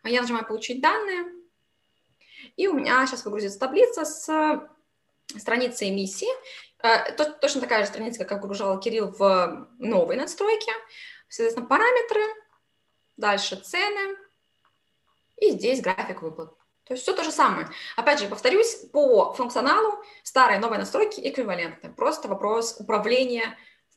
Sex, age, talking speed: female, 20-39, 125 wpm